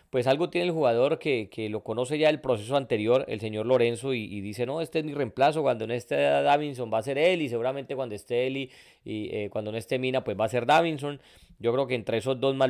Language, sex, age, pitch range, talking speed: Spanish, male, 30-49, 110-145 Hz, 265 wpm